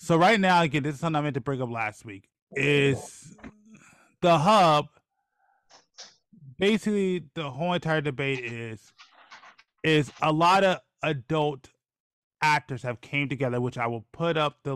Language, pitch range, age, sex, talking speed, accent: English, 125-155 Hz, 20-39, male, 155 wpm, American